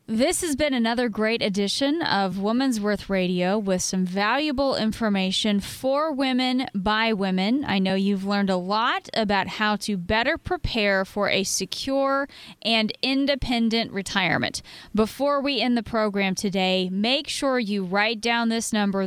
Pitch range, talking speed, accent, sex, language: 200-250 Hz, 150 wpm, American, female, English